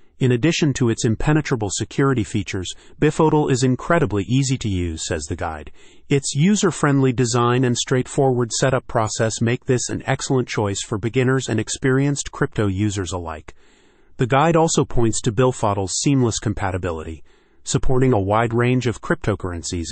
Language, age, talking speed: English, 30-49, 150 wpm